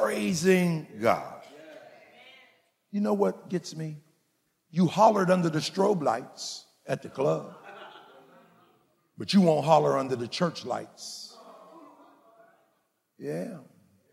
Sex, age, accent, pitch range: male, 50-69, American, 140-195 Hz